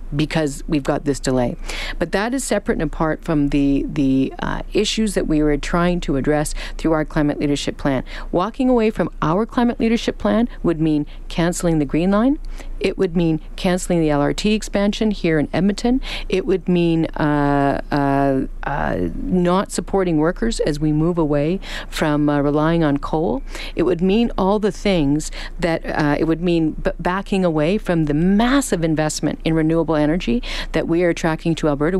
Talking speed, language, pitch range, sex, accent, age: 180 wpm, English, 150-190 Hz, female, American, 50-69